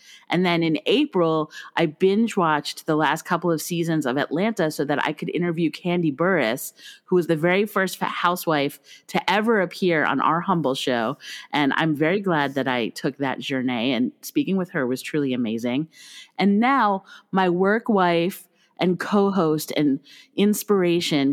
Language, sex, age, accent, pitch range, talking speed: English, female, 30-49, American, 155-210 Hz, 165 wpm